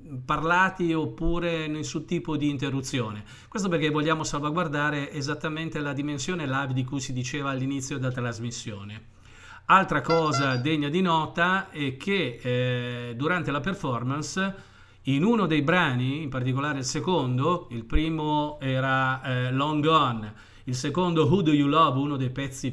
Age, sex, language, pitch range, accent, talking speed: 40-59, male, Italian, 125-160 Hz, native, 145 wpm